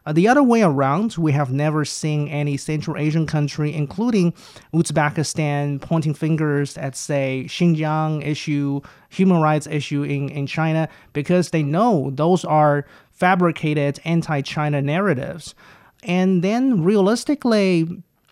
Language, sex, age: English, male, 30-49